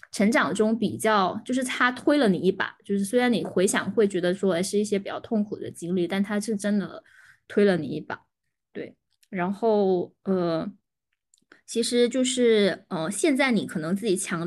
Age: 20-39